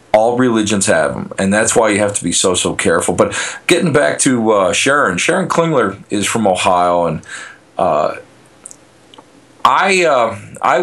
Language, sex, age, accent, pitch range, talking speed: English, male, 40-59, American, 95-120 Hz, 165 wpm